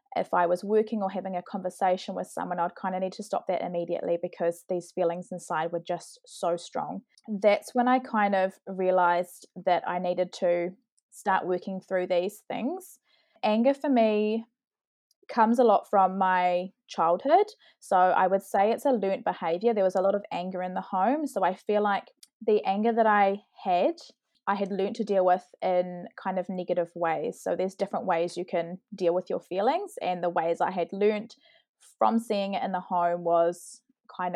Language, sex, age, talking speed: English, female, 20-39, 195 wpm